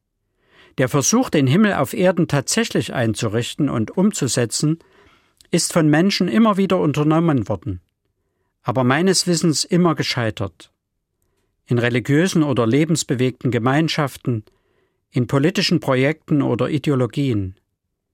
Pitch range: 115-160 Hz